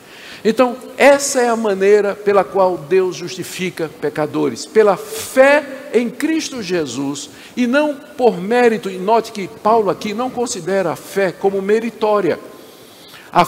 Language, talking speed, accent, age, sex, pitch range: Portuguese, 140 wpm, Brazilian, 60-79, male, 170-235 Hz